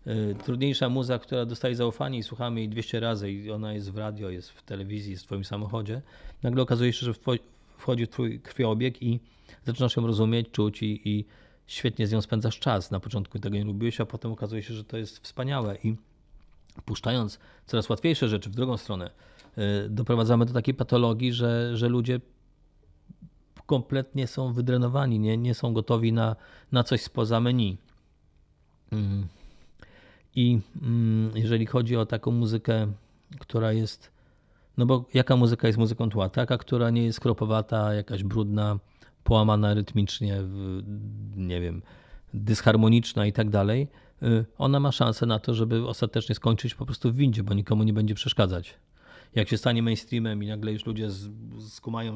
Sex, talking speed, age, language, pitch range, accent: male, 160 wpm, 30-49, Polish, 105-120 Hz, native